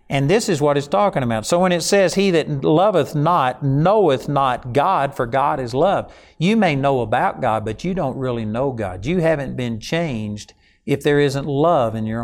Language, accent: English, American